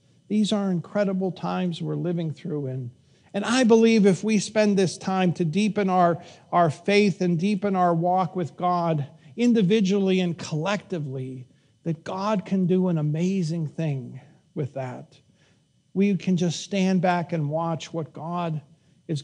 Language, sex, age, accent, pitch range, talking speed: English, male, 50-69, American, 150-190 Hz, 150 wpm